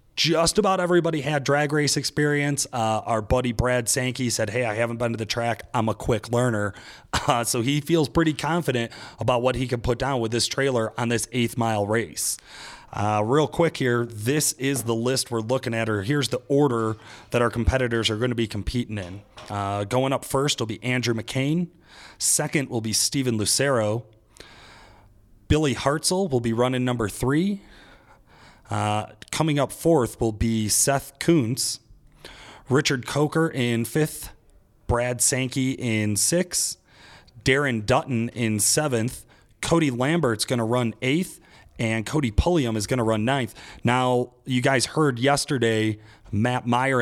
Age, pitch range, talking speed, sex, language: 30-49, 110-140 Hz, 165 wpm, male, English